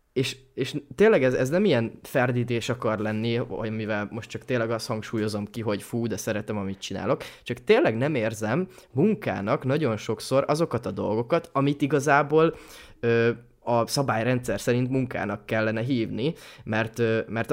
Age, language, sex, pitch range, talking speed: 20-39, Hungarian, male, 110-125 Hz, 155 wpm